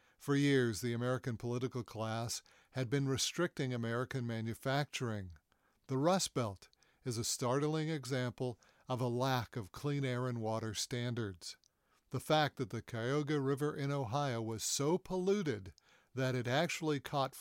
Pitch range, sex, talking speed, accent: 115-140 Hz, male, 145 wpm, American